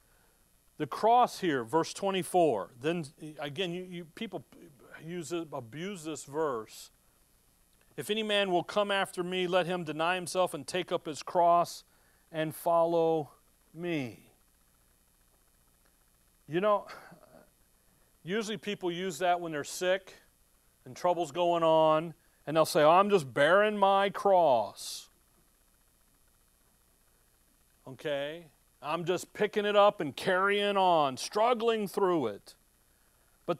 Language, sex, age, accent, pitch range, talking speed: English, male, 40-59, American, 135-195 Hz, 125 wpm